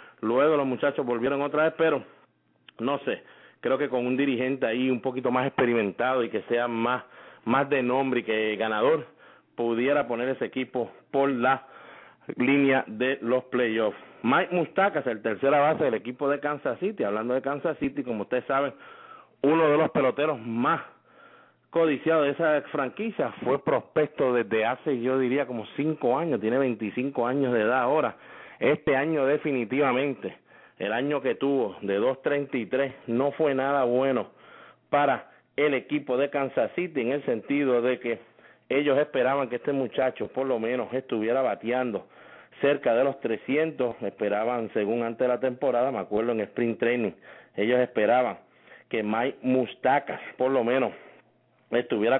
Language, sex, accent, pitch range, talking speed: English, male, Venezuelan, 120-145 Hz, 160 wpm